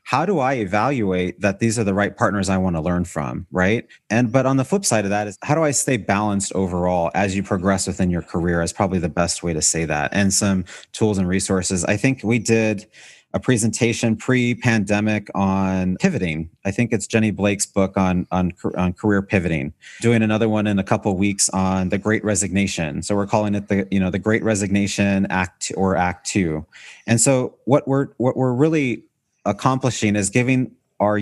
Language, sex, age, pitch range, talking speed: English, male, 30-49, 95-115 Hz, 205 wpm